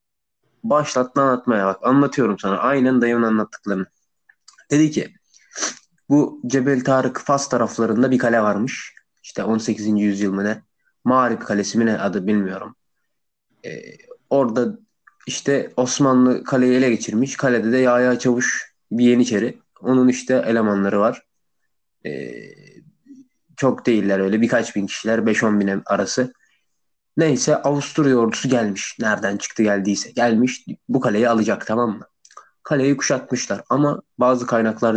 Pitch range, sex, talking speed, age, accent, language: 110-140 Hz, male, 125 wpm, 20-39, native, Turkish